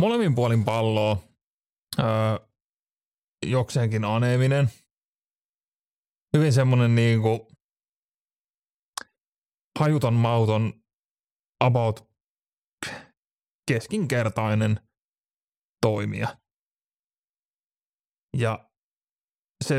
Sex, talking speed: male, 50 wpm